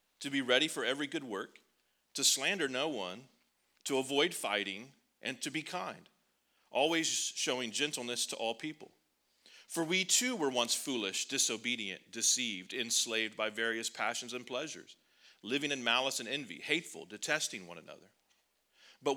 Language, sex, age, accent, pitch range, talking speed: English, male, 40-59, American, 115-145 Hz, 150 wpm